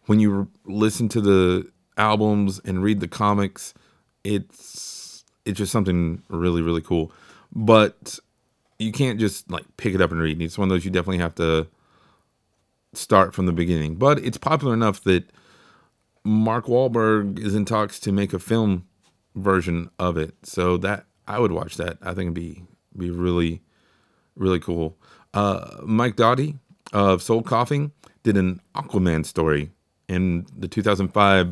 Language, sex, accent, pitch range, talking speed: English, male, American, 90-110 Hz, 160 wpm